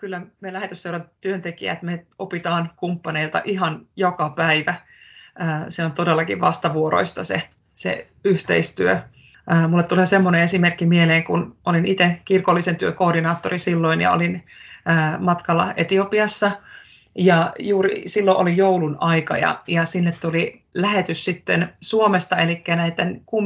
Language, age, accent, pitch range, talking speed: Finnish, 30-49, native, 165-185 Hz, 120 wpm